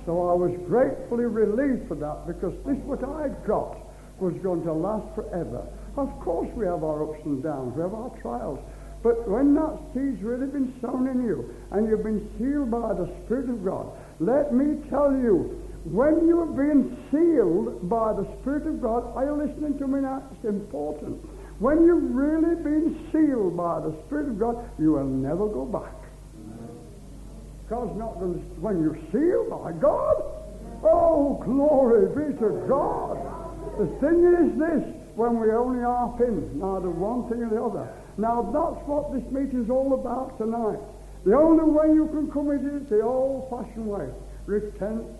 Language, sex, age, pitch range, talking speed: English, male, 60-79, 180-280 Hz, 180 wpm